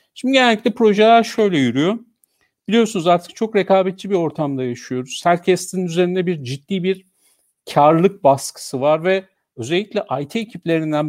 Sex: male